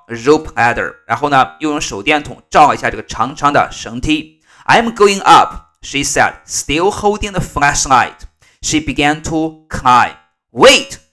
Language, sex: Chinese, male